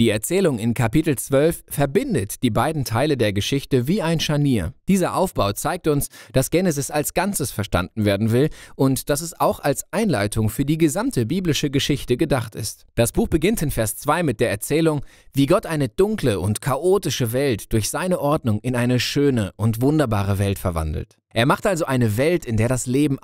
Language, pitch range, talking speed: Spanish, 110-150 Hz, 190 wpm